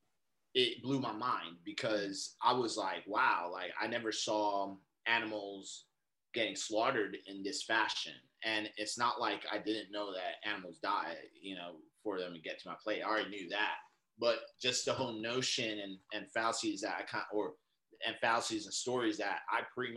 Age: 30-49